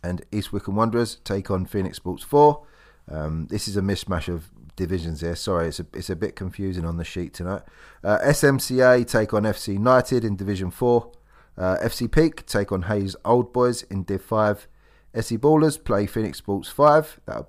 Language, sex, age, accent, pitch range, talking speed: English, male, 30-49, British, 90-120 Hz, 190 wpm